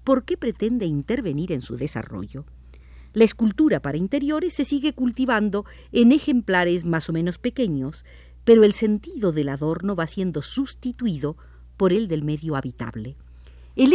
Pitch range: 150-240 Hz